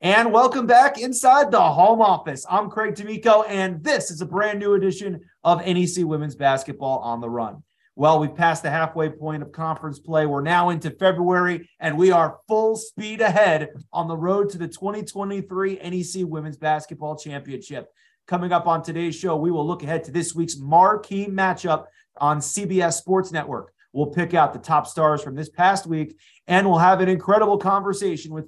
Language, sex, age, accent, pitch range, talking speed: English, male, 30-49, American, 155-200 Hz, 185 wpm